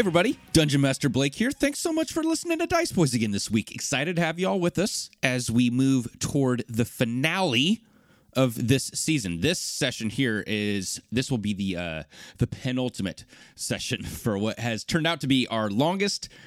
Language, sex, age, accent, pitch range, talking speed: English, male, 30-49, American, 100-145 Hz, 195 wpm